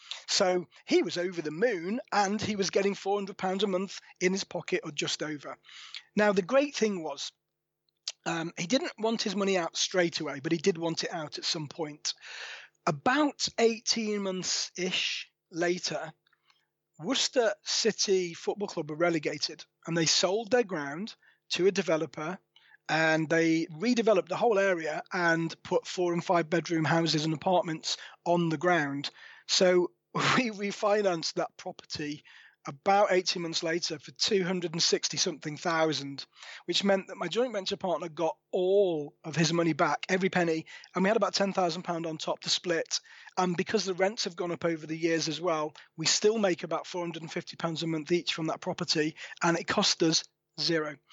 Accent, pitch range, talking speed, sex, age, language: British, 165-200 Hz, 170 wpm, male, 30-49, English